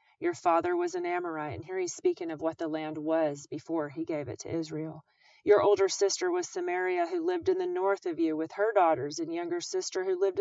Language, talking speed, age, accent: English, 230 wpm, 30-49, American